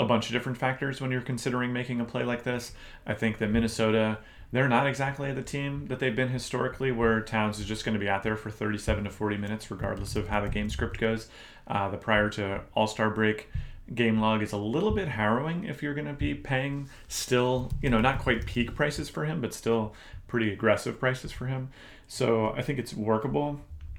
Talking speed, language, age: 215 wpm, English, 30-49